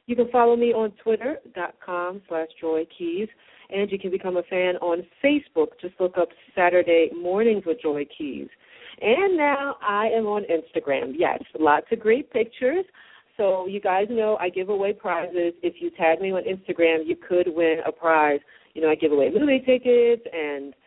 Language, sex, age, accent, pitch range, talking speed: English, female, 40-59, American, 170-225 Hz, 185 wpm